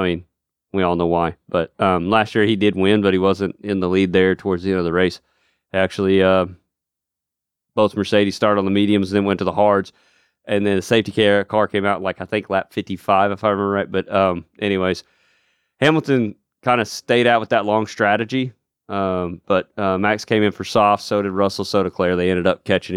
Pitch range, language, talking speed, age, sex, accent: 95-105 Hz, English, 225 wpm, 30-49, male, American